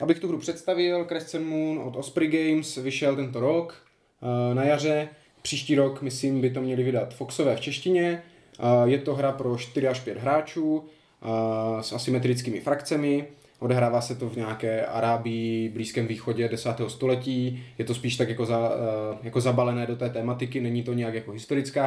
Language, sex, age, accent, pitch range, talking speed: Czech, male, 20-39, native, 115-130 Hz, 165 wpm